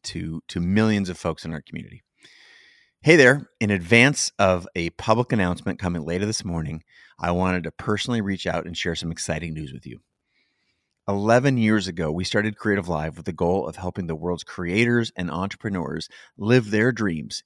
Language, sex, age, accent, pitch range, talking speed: English, male, 30-49, American, 85-110 Hz, 180 wpm